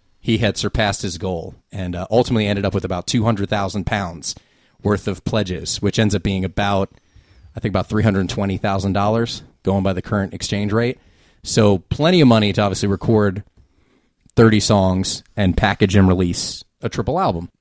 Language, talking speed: English, 165 wpm